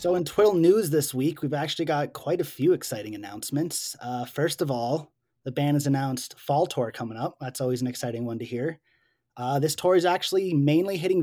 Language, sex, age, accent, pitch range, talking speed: English, male, 20-39, American, 135-160 Hz, 215 wpm